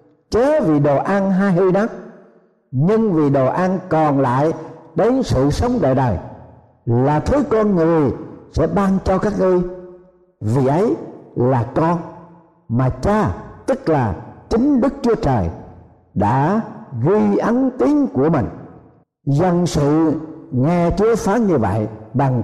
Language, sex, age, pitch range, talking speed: Vietnamese, male, 60-79, 130-195 Hz, 140 wpm